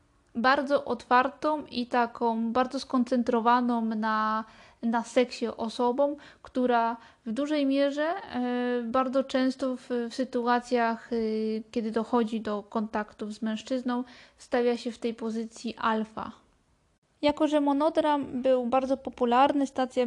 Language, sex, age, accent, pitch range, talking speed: Polish, female, 20-39, native, 235-270 Hz, 115 wpm